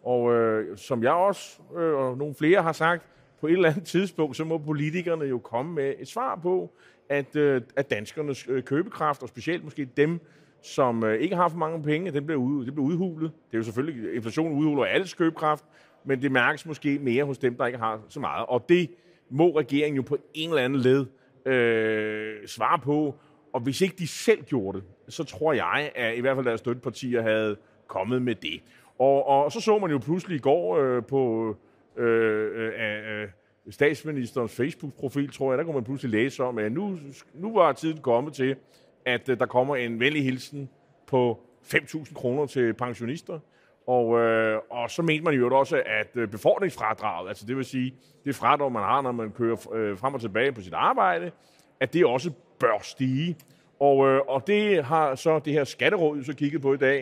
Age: 30-49